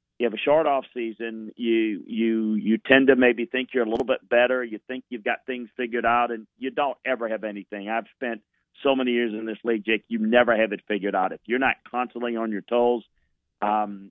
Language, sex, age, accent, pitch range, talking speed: English, male, 40-59, American, 105-125 Hz, 230 wpm